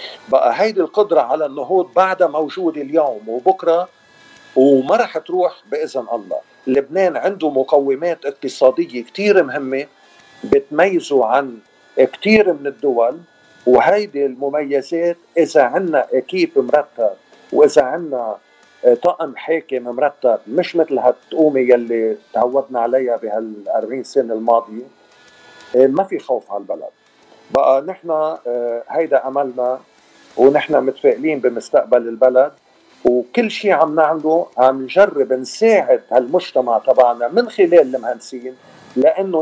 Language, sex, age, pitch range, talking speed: Arabic, male, 50-69, 130-180 Hz, 110 wpm